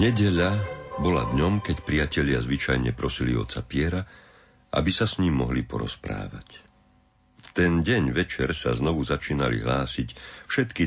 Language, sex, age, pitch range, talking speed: Slovak, male, 50-69, 65-90 Hz, 130 wpm